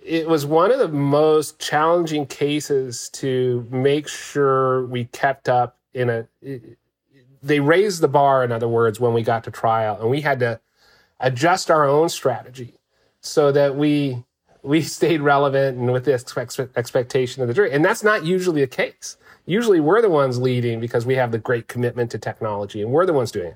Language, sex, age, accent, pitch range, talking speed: English, male, 40-59, American, 120-155 Hz, 190 wpm